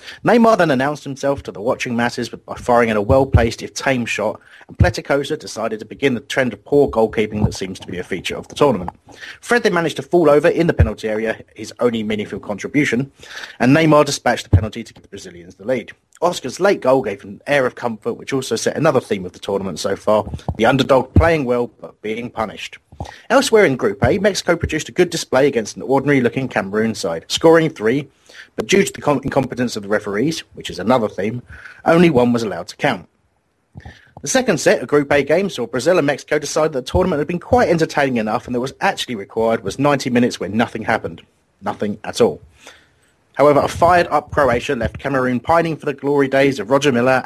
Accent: British